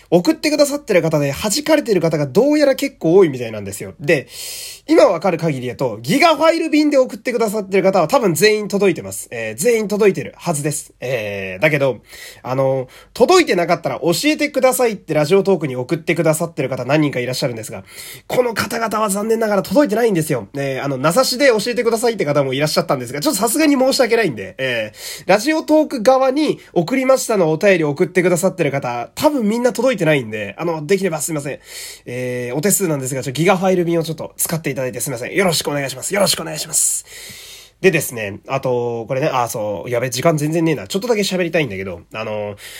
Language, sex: Japanese, male